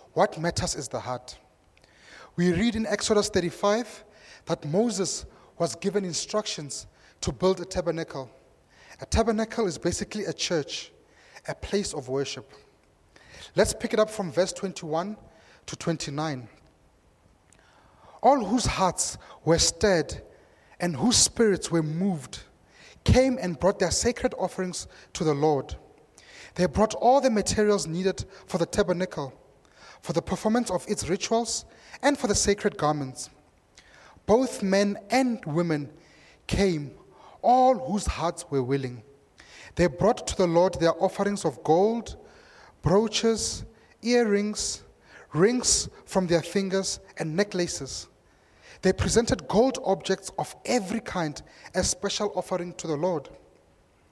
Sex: male